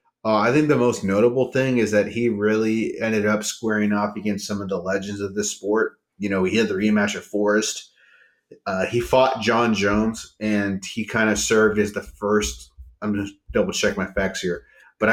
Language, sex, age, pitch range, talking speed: English, male, 30-49, 100-120 Hz, 205 wpm